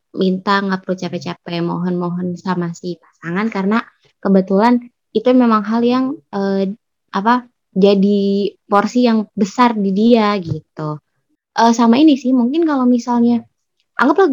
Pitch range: 195-255 Hz